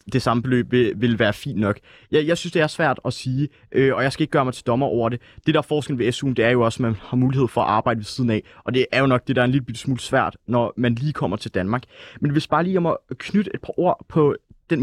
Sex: male